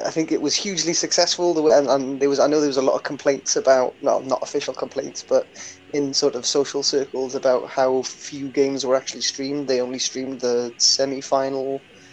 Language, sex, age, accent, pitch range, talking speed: English, male, 20-39, British, 130-145 Hz, 215 wpm